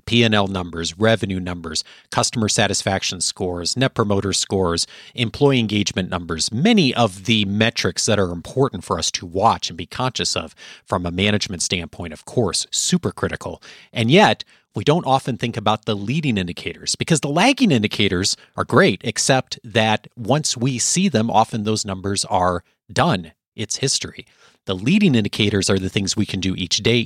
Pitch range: 95-125 Hz